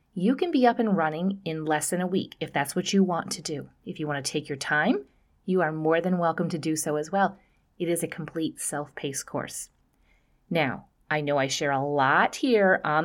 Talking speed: 230 wpm